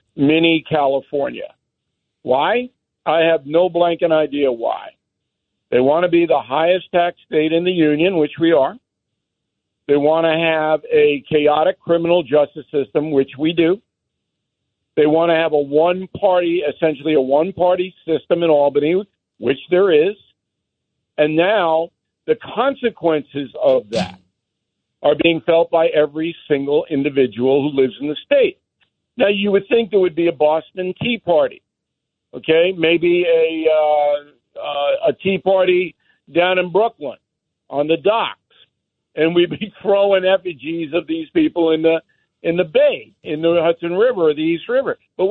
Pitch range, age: 150-185 Hz, 50-69